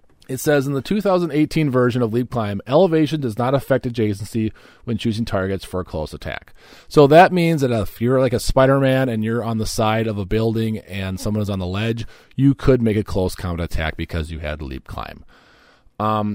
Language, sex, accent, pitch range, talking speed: English, male, American, 95-130 Hz, 215 wpm